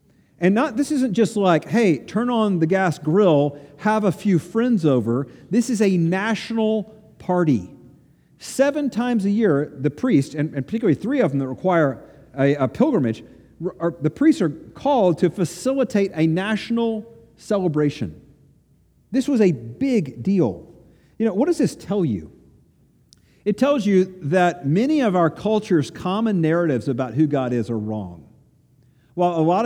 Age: 50-69